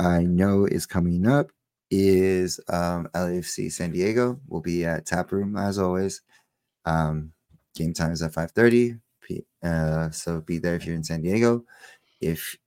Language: English